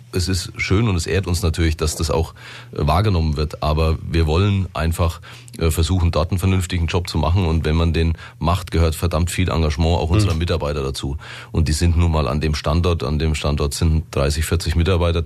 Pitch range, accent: 80-95 Hz, German